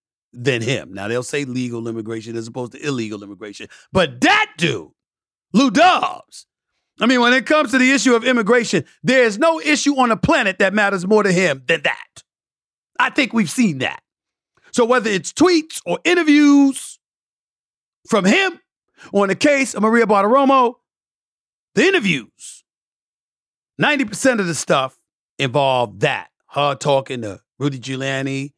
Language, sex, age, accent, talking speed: English, male, 40-59, American, 155 wpm